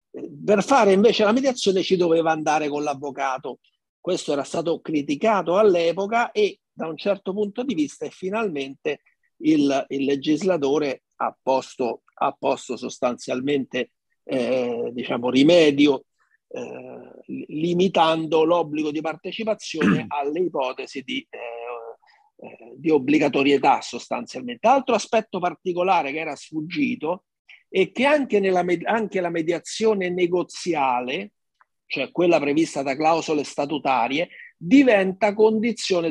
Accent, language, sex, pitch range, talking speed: native, Italian, male, 150-215 Hz, 110 wpm